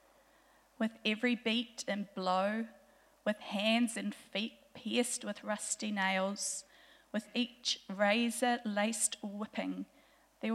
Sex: female